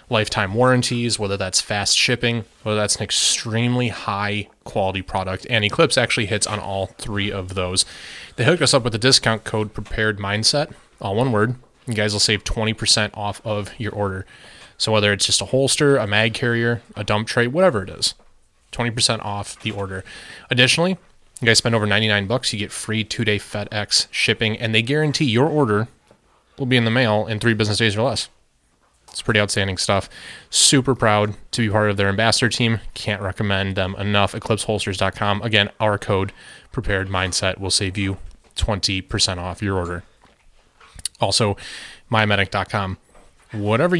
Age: 20-39